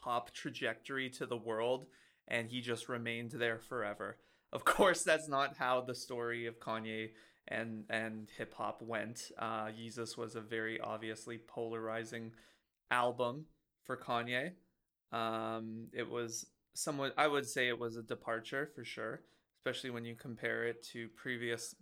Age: 20-39